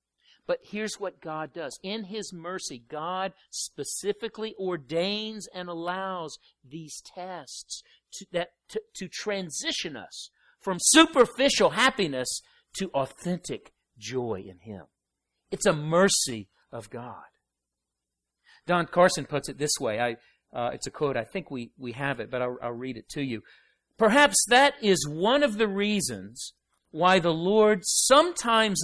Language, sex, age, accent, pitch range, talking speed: English, male, 50-69, American, 160-230 Hz, 140 wpm